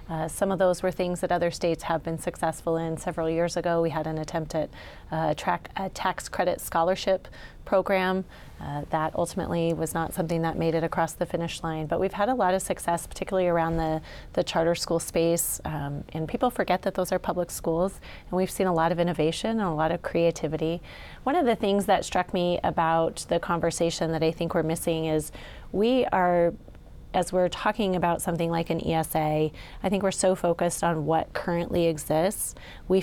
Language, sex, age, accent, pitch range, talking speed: English, female, 30-49, American, 160-180 Hz, 205 wpm